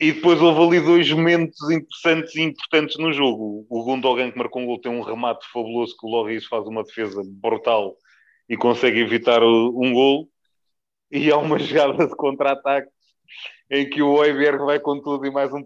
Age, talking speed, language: 20-39, 190 wpm, Portuguese